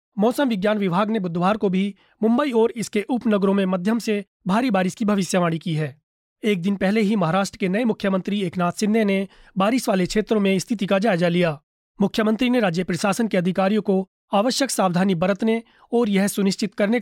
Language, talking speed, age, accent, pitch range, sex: Hindi, 185 wpm, 30-49, native, 185-220 Hz, male